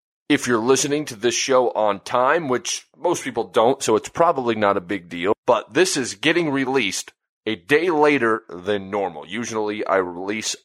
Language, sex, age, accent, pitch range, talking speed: English, male, 30-49, American, 105-130 Hz, 180 wpm